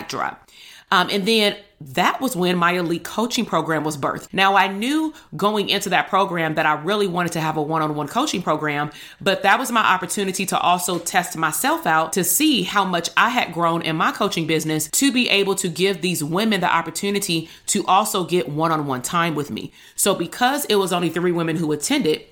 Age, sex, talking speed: 30-49, female, 205 wpm